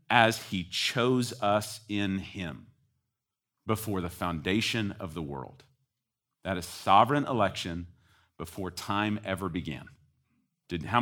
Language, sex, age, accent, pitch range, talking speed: English, male, 40-59, American, 105-150 Hz, 120 wpm